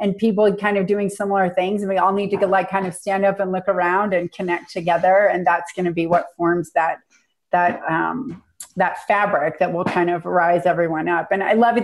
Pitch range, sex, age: 175-205 Hz, female, 30-49